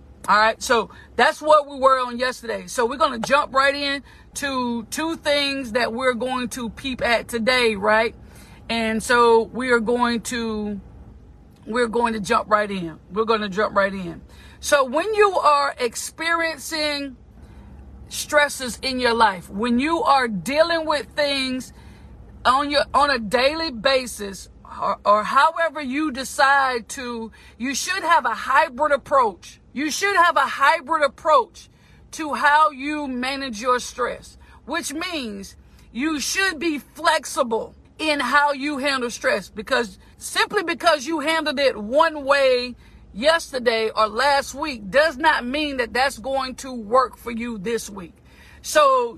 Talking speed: 155 wpm